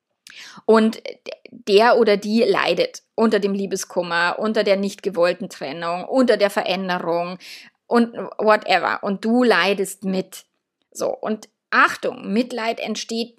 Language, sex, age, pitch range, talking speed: German, female, 20-39, 195-240 Hz, 120 wpm